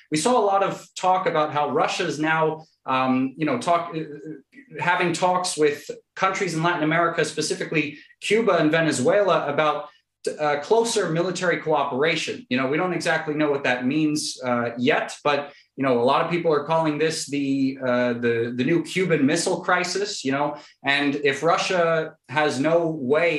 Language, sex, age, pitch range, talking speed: English, male, 30-49, 135-170 Hz, 170 wpm